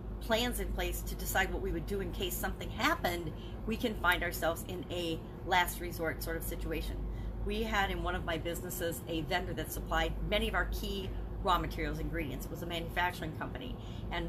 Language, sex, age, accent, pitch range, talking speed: English, female, 40-59, American, 170-205 Hz, 200 wpm